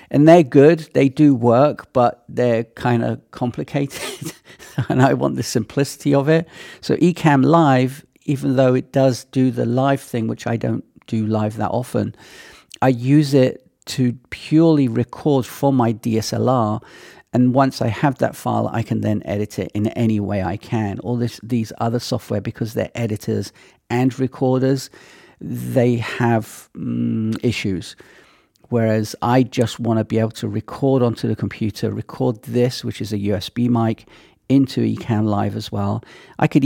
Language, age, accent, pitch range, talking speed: English, 50-69, British, 110-135 Hz, 165 wpm